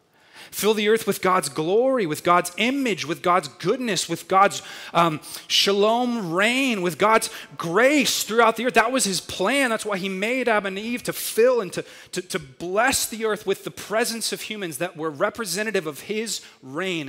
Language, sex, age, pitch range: English, male, 30-49, 155-205 Hz